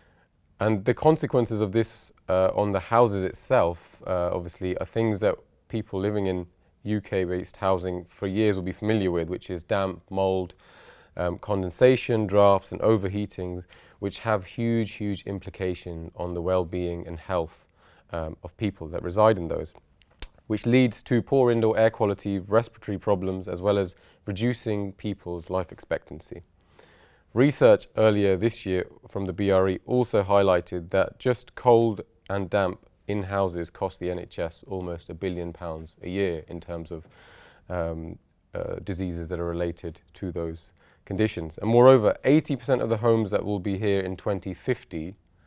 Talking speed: 155 wpm